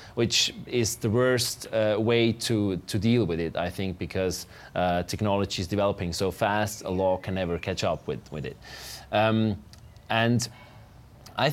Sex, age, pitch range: male, 30-49, 100-125 Hz